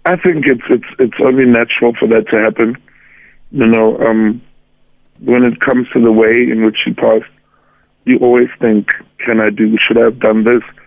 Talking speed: 195 wpm